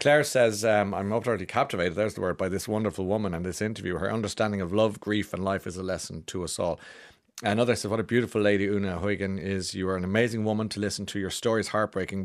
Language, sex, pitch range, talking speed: English, male, 95-110 Hz, 245 wpm